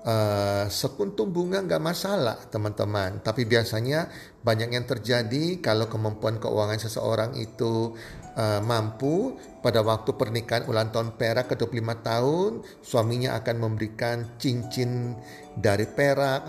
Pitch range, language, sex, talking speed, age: 110-130 Hz, Indonesian, male, 120 wpm, 40-59